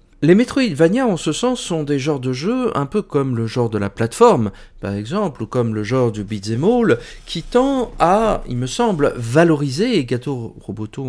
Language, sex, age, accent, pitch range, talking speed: French, male, 40-59, French, 110-155 Hz, 195 wpm